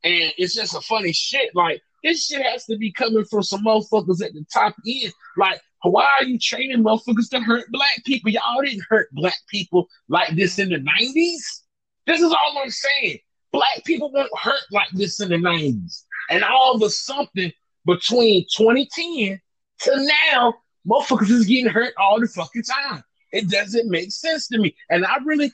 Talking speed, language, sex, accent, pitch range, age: 190 wpm, English, male, American, 200-270 Hz, 30-49